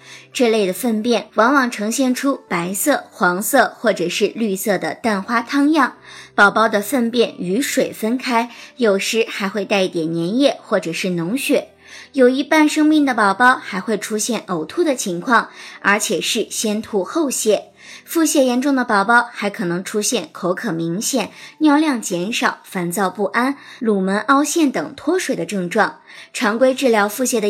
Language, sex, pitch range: Chinese, male, 200-270 Hz